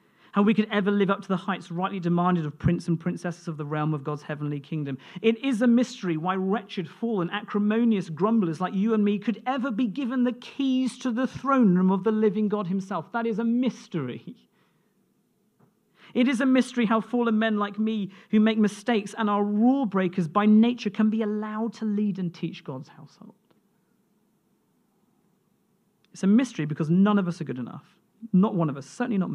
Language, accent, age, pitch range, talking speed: English, British, 40-59, 165-215 Hz, 195 wpm